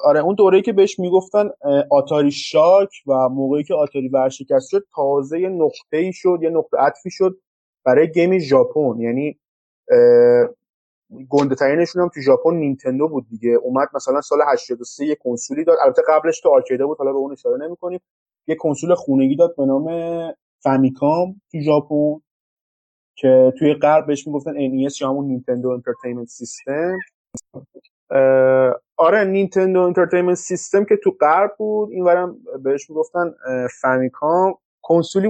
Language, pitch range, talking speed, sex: Persian, 135-185 Hz, 140 wpm, male